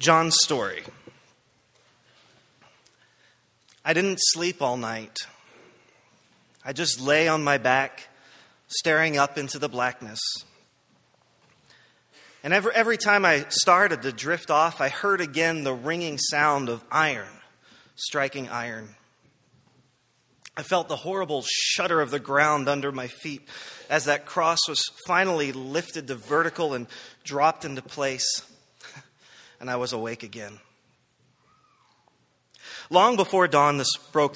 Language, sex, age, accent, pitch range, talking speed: English, male, 30-49, American, 125-155 Hz, 120 wpm